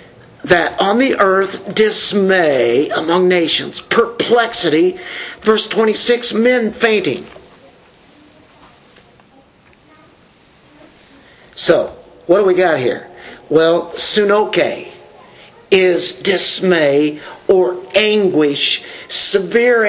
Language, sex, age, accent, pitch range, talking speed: English, male, 50-69, American, 180-245 Hz, 75 wpm